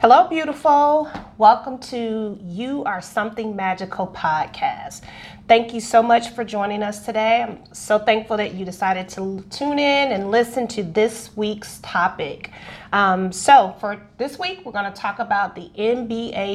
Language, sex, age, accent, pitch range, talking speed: English, female, 30-49, American, 195-240 Hz, 155 wpm